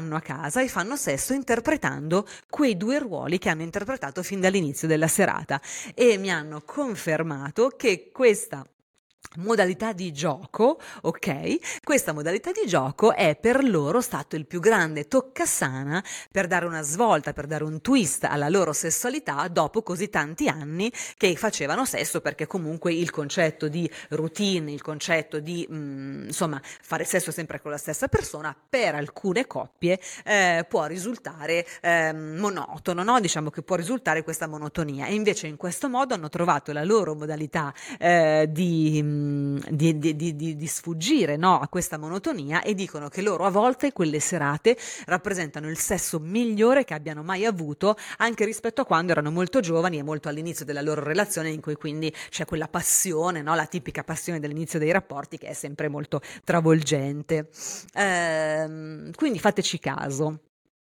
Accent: native